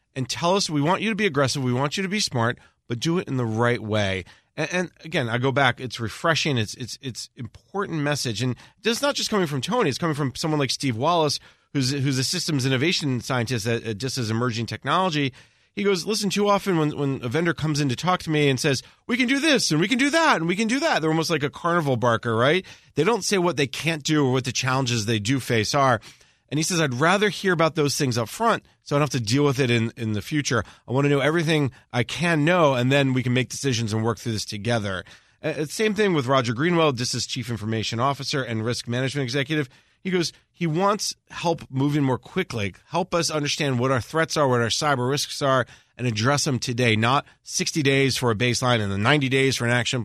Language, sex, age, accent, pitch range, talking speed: English, male, 30-49, American, 120-160 Hz, 250 wpm